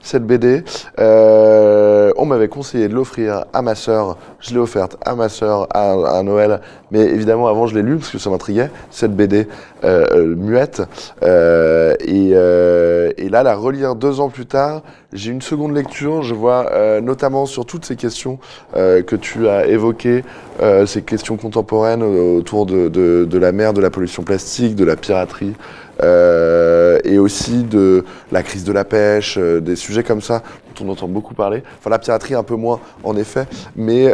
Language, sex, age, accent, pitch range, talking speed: French, male, 20-39, French, 100-130 Hz, 185 wpm